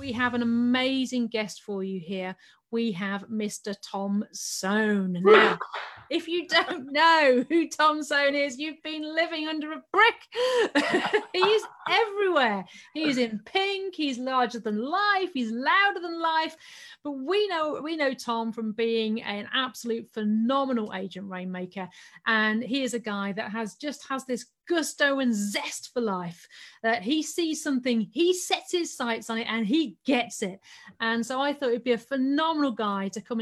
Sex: female